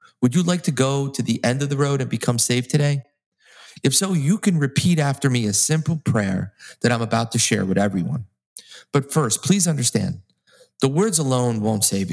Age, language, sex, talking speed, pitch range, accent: 30-49, English, male, 205 wpm, 115-155 Hz, American